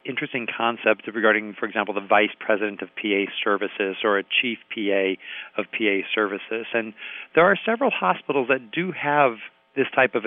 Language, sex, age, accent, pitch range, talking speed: English, male, 40-59, American, 105-130 Hz, 170 wpm